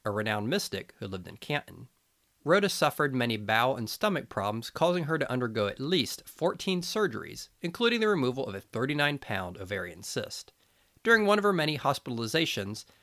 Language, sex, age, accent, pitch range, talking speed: English, male, 40-59, American, 105-160 Hz, 165 wpm